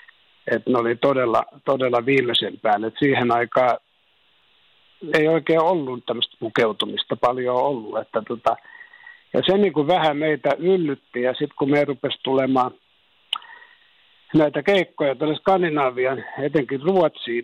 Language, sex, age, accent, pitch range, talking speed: Finnish, male, 60-79, native, 130-160 Hz, 120 wpm